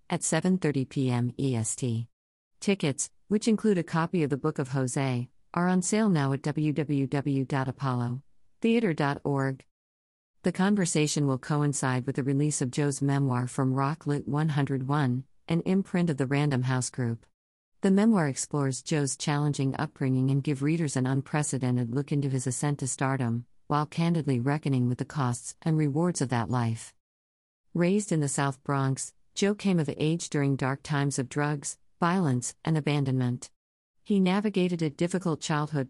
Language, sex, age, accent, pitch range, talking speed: English, female, 50-69, American, 130-155 Hz, 150 wpm